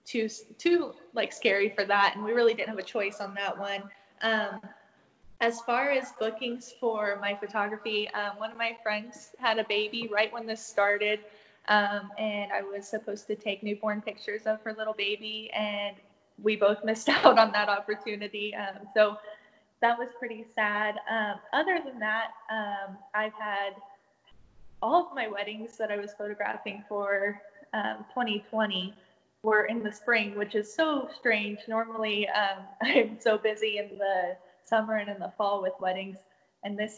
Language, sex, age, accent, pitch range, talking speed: English, female, 10-29, American, 200-220 Hz, 170 wpm